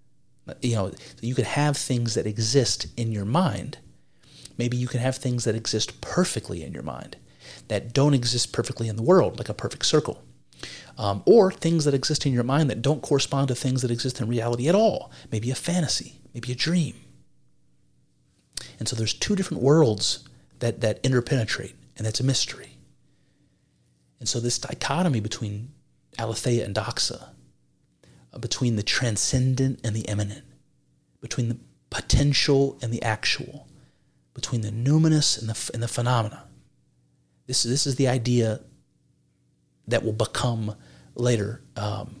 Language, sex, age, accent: English, male, 30-49, American